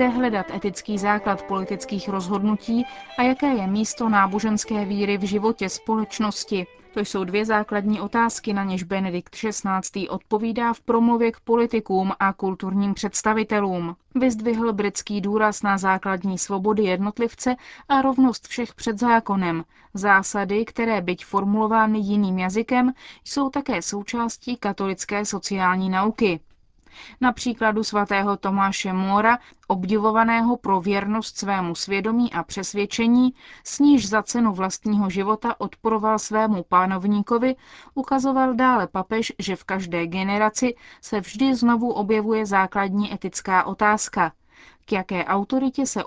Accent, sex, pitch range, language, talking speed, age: native, female, 195-230 Hz, Czech, 120 wpm, 20-39